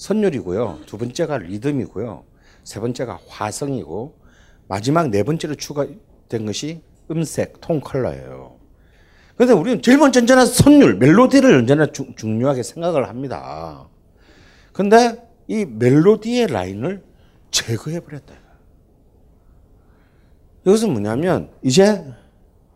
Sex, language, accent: male, Korean, native